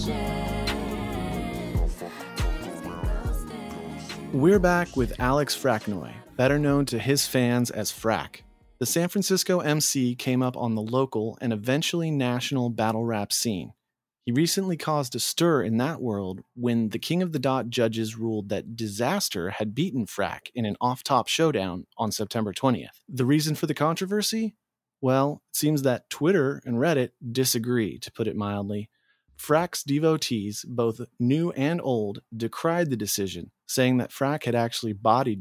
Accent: American